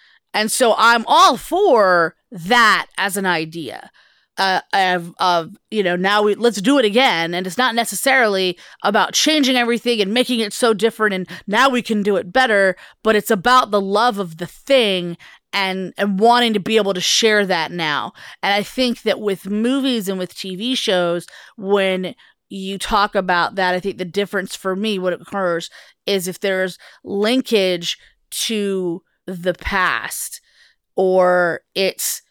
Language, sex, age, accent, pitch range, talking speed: English, female, 30-49, American, 180-230 Hz, 165 wpm